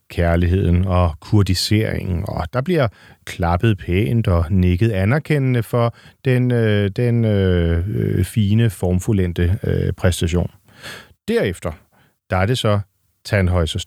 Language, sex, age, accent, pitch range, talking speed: Danish, male, 40-59, native, 95-120 Hz, 110 wpm